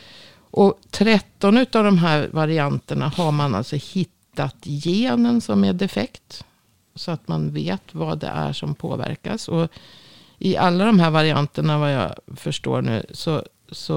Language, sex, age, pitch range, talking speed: Swedish, female, 50-69, 125-170 Hz, 150 wpm